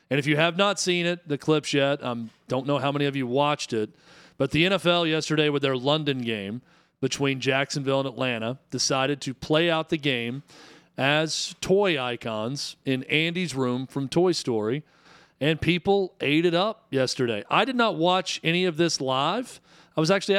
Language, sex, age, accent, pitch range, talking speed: English, male, 40-59, American, 125-160 Hz, 190 wpm